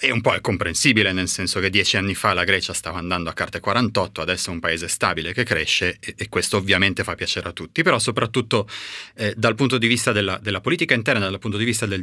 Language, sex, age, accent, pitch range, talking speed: Italian, male, 30-49, native, 100-120 Hz, 240 wpm